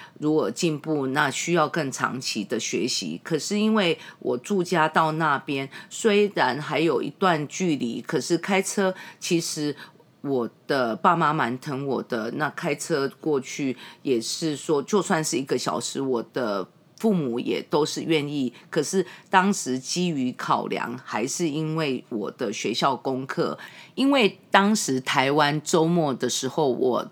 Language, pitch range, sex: English, 140-185 Hz, female